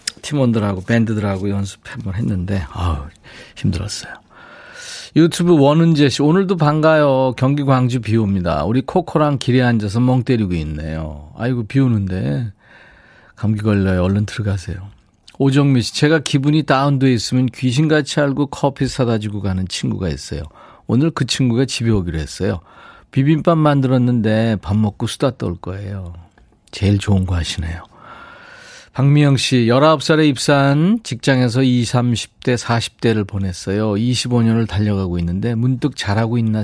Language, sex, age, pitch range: Korean, male, 40-59, 100-140 Hz